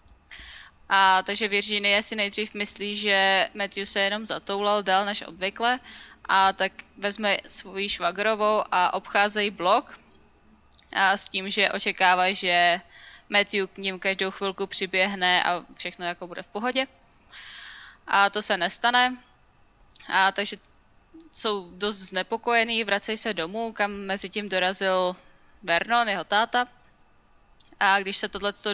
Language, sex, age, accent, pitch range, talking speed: Czech, female, 10-29, native, 185-210 Hz, 130 wpm